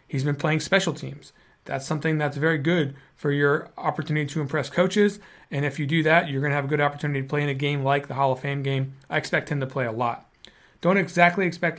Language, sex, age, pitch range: English, male, 30-49, 130-150 Hz